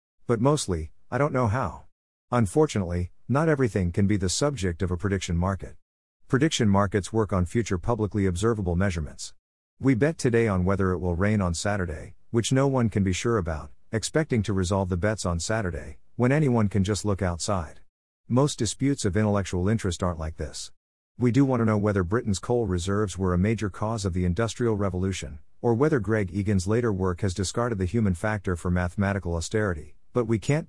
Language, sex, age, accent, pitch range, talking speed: English, male, 50-69, American, 90-115 Hz, 190 wpm